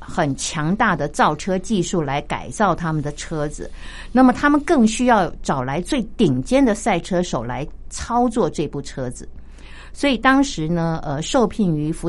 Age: 50-69